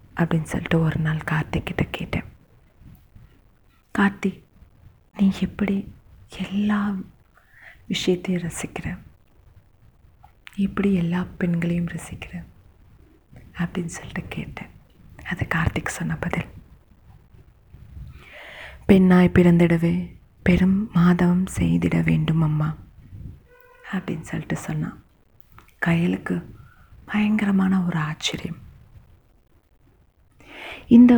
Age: 30-49